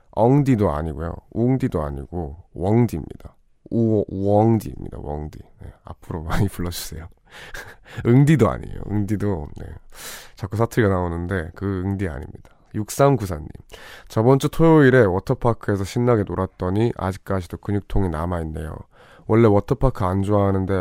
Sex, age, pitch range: male, 20-39, 95-120 Hz